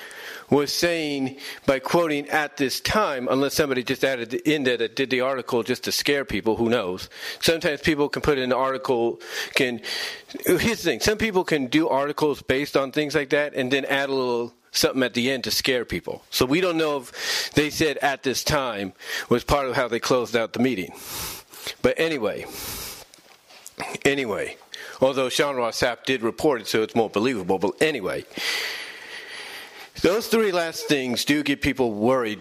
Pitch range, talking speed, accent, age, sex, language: 130-200 Hz, 180 wpm, American, 40-59, male, English